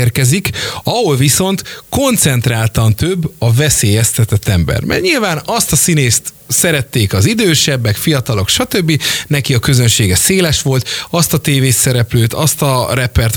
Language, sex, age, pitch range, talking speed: Hungarian, male, 30-49, 110-140 Hz, 130 wpm